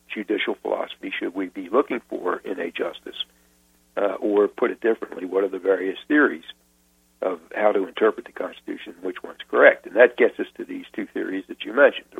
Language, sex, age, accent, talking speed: English, male, 60-79, American, 200 wpm